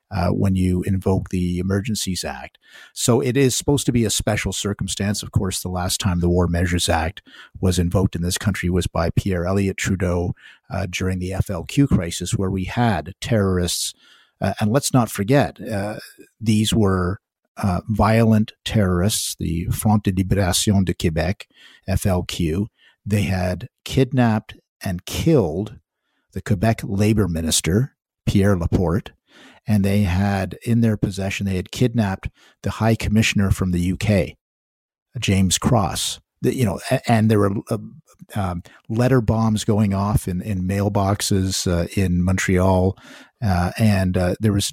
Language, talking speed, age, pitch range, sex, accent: English, 150 wpm, 50-69, 90-110 Hz, male, American